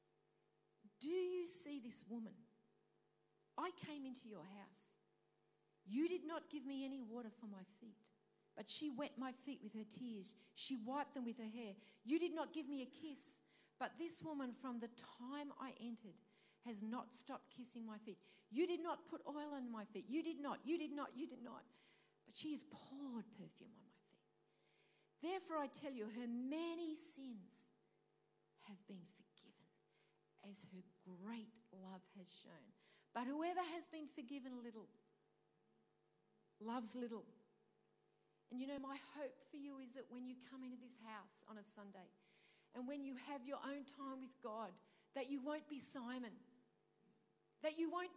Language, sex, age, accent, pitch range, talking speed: English, female, 40-59, Australian, 225-315 Hz, 175 wpm